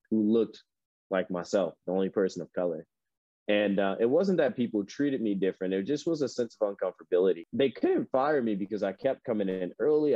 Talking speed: 205 wpm